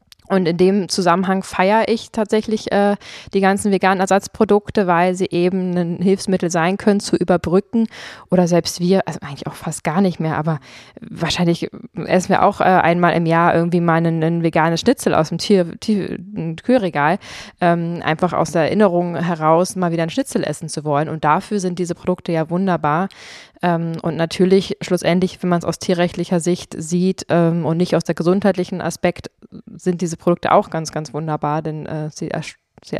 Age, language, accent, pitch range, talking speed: 20-39, German, German, 170-195 Hz, 180 wpm